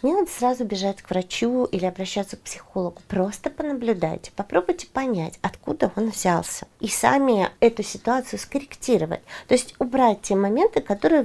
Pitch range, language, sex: 200-270 Hz, Russian, female